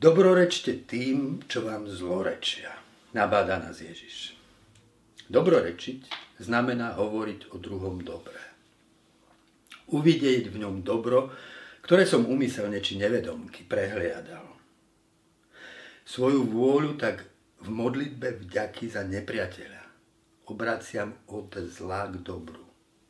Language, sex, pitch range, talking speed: Slovak, male, 95-125 Hz, 95 wpm